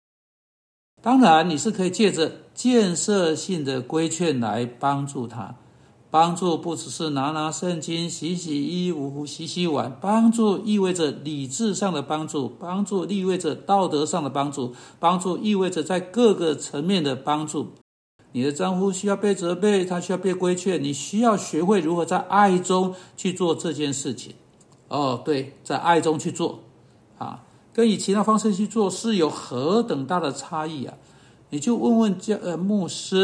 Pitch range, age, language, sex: 150-195 Hz, 60-79, Chinese, male